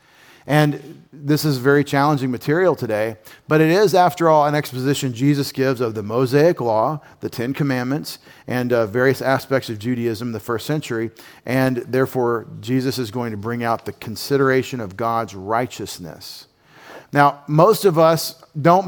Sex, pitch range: male, 125-150 Hz